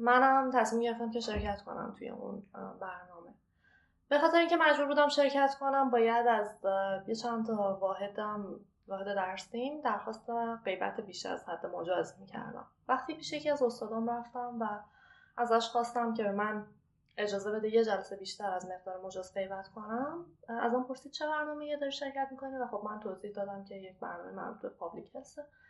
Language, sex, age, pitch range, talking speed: Persian, female, 20-39, 210-280 Hz, 165 wpm